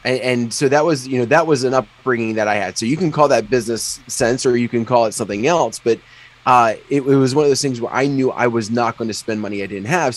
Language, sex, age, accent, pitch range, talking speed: English, male, 20-39, American, 100-130 Hz, 290 wpm